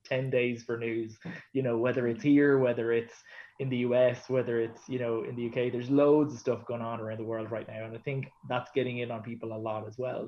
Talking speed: 255 wpm